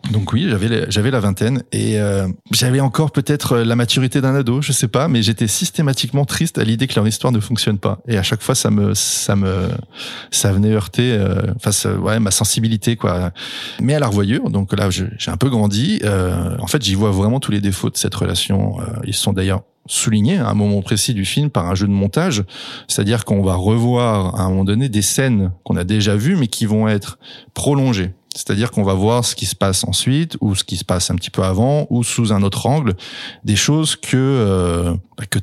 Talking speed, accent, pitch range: 225 wpm, French, 100-125 Hz